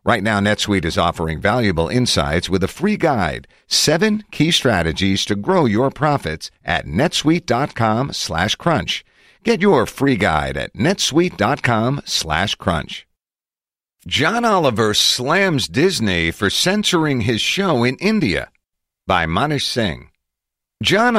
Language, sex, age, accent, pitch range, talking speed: English, male, 50-69, American, 95-140 Hz, 125 wpm